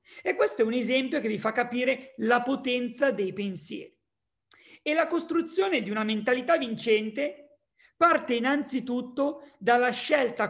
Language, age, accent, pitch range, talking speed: Italian, 40-59, native, 220-275 Hz, 135 wpm